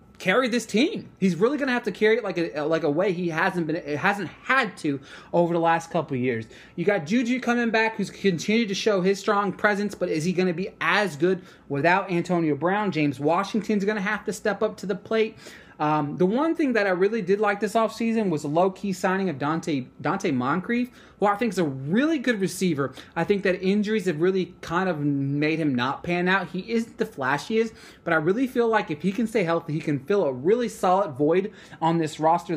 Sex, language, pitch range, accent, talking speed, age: male, English, 155-215 Hz, American, 230 wpm, 20-39